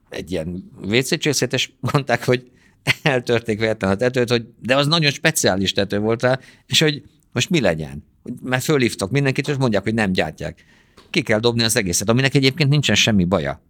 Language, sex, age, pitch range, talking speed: Hungarian, male, 50-69, 95-120 Hz, 180 wpm